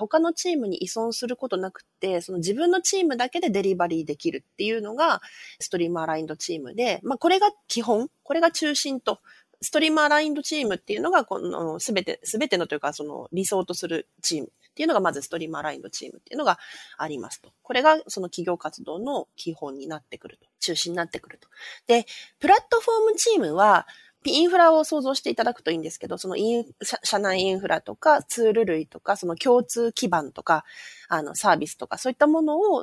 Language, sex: Japanese, female